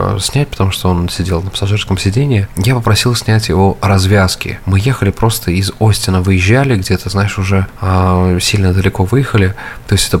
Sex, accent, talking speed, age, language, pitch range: male, native, 165 wpm, 20-39, Russian, 95-110 Hz